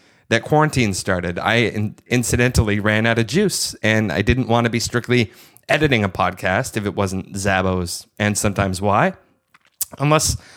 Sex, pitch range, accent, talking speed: male, 105-130 Hz, American, 160 wpm